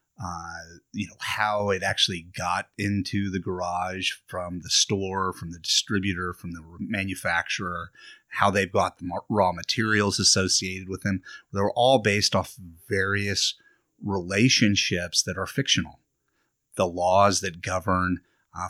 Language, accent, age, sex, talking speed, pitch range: English, American, 30-49, male, 135 wpm, 90-105 Hz